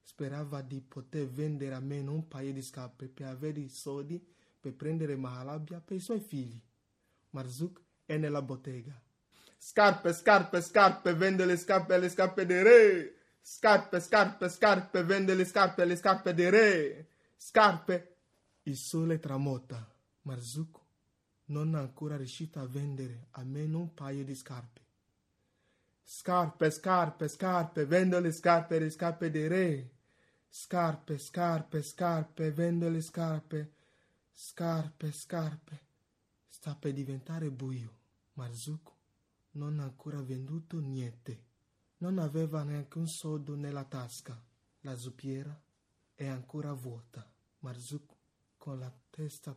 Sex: male